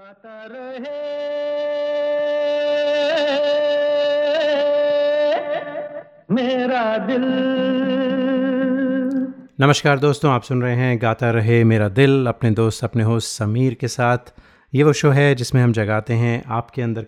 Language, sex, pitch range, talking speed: Hindi, male, 115-145 Hz, 110 wpm